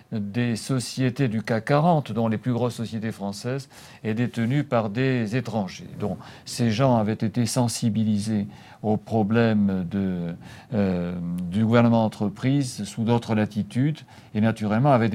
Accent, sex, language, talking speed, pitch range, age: French, male, French, 140 wpm, 110-140 Hz, 50-69